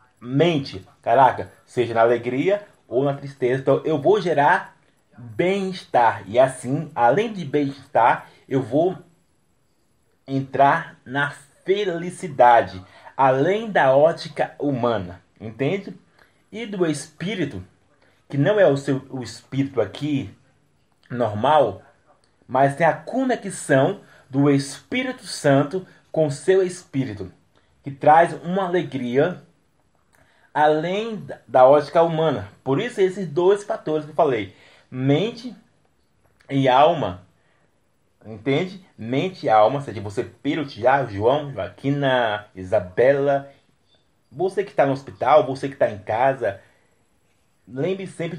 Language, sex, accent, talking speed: Portuguese, male, Brazilian, 115 wpm